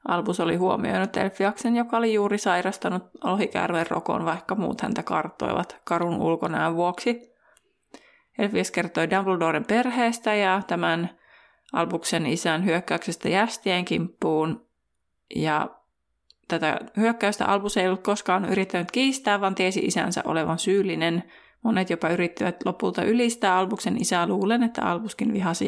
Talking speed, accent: 125 wpm, native